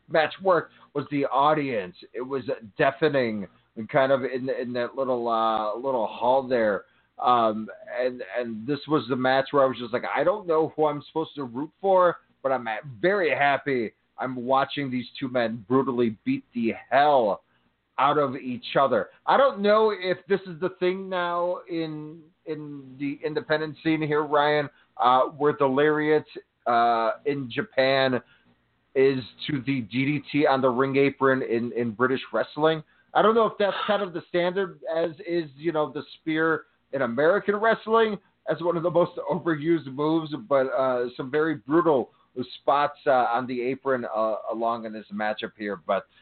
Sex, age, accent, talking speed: male, 30-49, American, 175 wpm